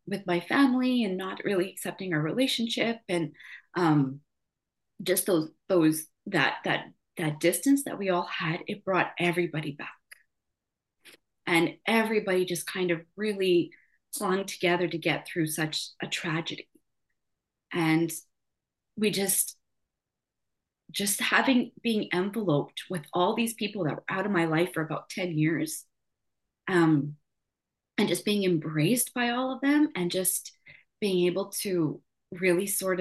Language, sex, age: English, female, 20-39